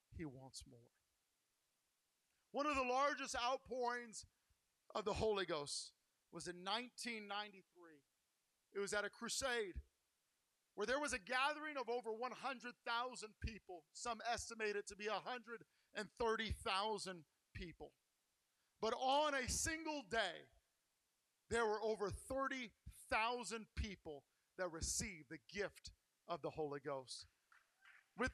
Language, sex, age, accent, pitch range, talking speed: English, male, 50-69, American, 170-255 Hz, 115 wpm